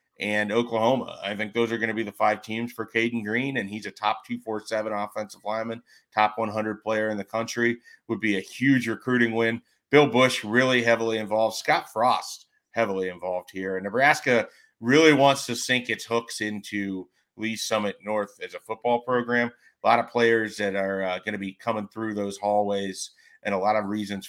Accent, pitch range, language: American, 100-115 Hz, English